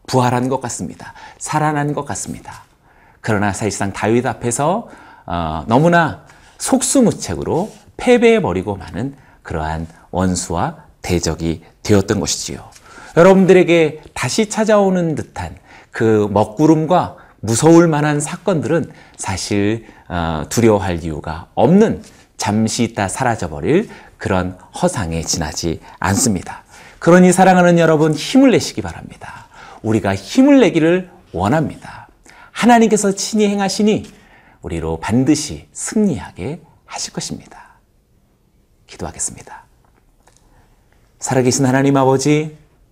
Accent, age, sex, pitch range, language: native, 40-59, male, 100-165 Hz, Korean